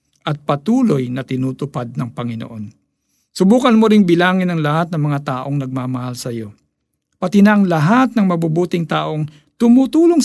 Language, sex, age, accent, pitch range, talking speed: Filipino, male, 50-69, native, 130-170 Hz, 150 wpm